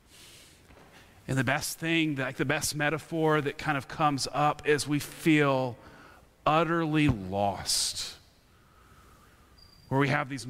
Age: 30-49